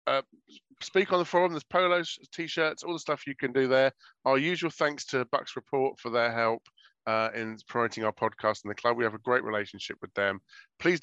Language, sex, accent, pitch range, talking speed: English, male, British, 110-145 Hz, 220 wpm